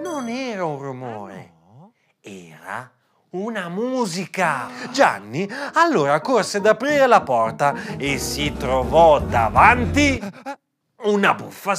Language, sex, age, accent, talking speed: Italian, male, 40-59, native, 100 wpm